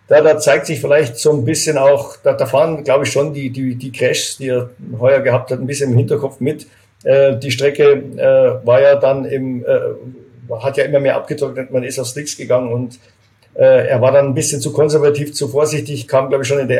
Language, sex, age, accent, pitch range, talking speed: German, male, 50-69, German, 125-145 Hz, 230 wpm